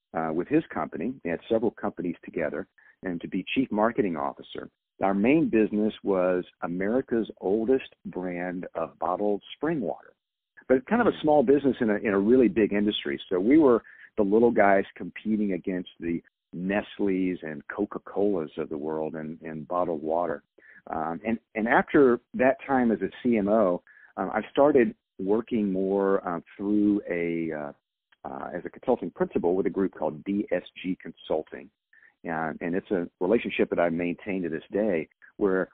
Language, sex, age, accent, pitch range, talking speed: English, male, 50-69, American, 90-110 Hz, 165 wpm